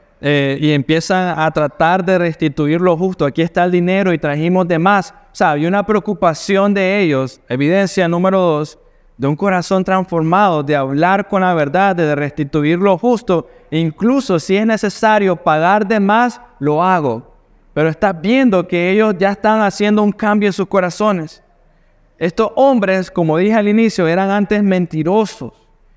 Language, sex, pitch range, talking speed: Spanish, male, 150-205 Hz, 165 wpm